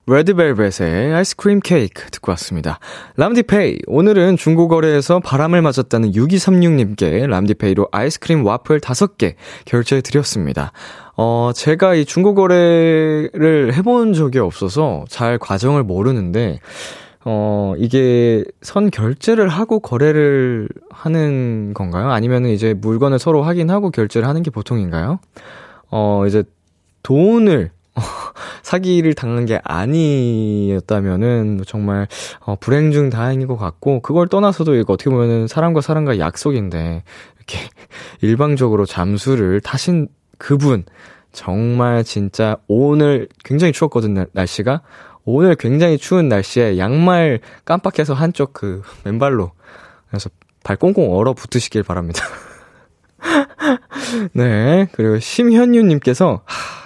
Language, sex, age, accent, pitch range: Korean, male, 20-39, native, 105-160 Hz